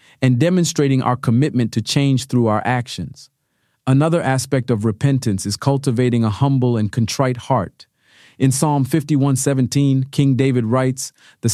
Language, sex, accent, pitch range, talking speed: English, male, American, 110-135 Hz, 140 wpm